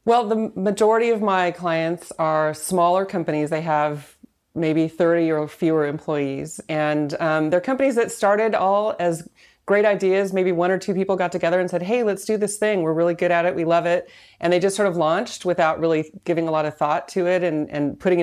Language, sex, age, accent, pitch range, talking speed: English, female, 30-49, American, 155-190 Hz, 215 wpm